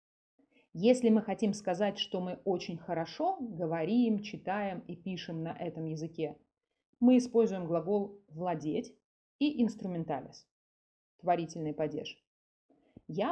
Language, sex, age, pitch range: Russian, female, 30-49, 165-220 Hz